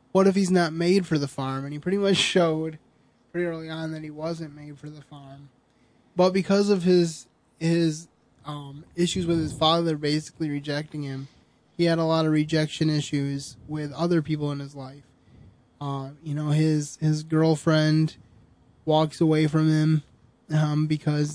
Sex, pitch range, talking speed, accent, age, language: male, 145-165 Hz, 170 wpm, American, 20-39, English